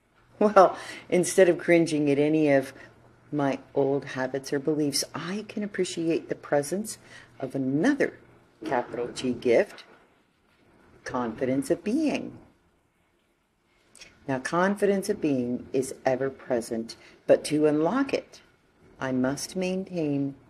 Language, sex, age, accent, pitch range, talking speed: English, female, 50-69, American, 125-165 Hz, 110 wpm